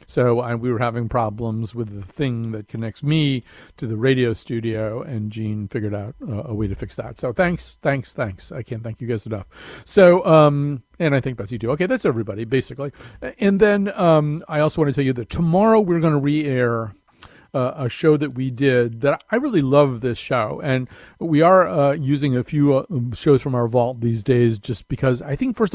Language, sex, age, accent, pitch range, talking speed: English, male, 50-69, American, 120-150 Hz, 220 wpm